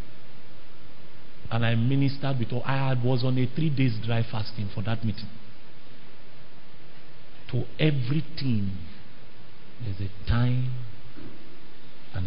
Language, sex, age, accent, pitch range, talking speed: English, male, 50-69, Nigerian, 115-150 Hz, 110 wpm